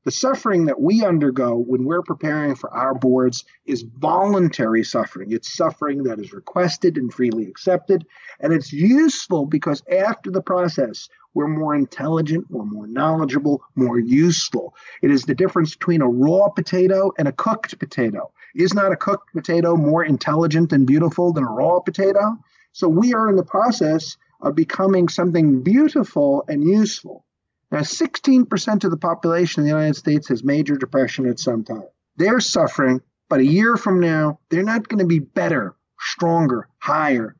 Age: 40-59